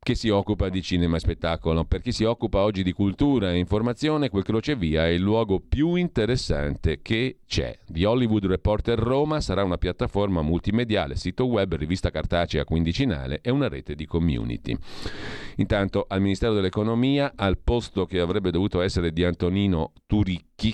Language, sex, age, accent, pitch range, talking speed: Italian, male, 40-59, native, 80-110 Hz, 160 wpm